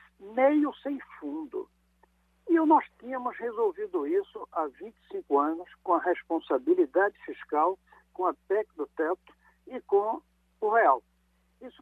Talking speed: 125 wpm